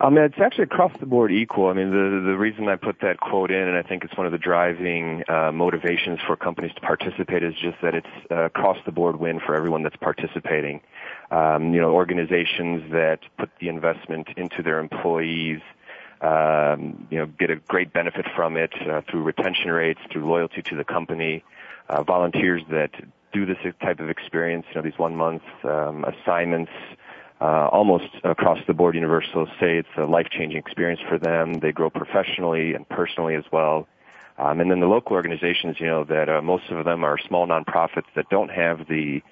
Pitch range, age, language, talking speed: 80-90 Hz, 30-49, English, 195 wpm